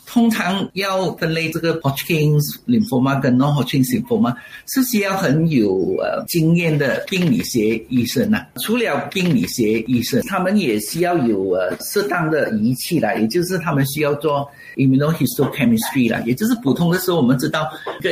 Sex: male